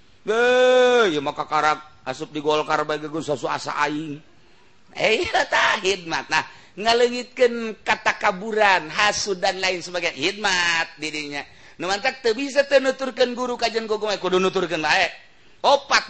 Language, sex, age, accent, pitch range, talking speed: Indonesian, male, 40-59, native, 160-225 Hz, 125 wpm